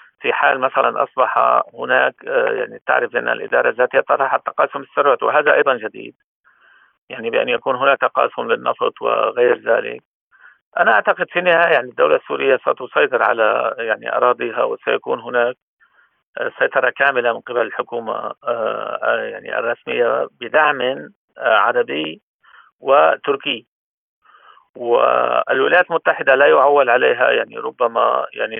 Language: Arabic